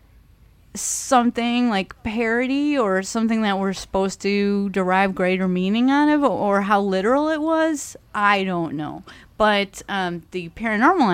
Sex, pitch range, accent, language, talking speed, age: female, 180-230 Hz, American, English, 140 wpm, 30-49